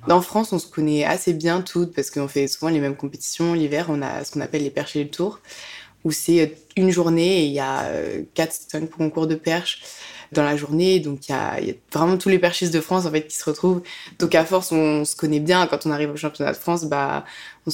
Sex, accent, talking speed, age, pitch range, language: female, French, 255 wpm, 20-39, 145-165 Hz, French